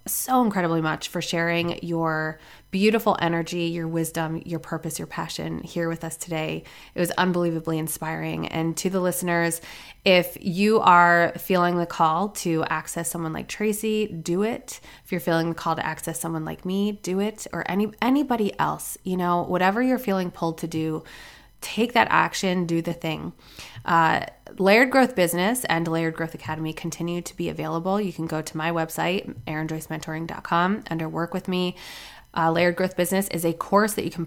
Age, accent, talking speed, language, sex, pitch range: 20-39, American, 180 wpm, English, female, 165-185 Hz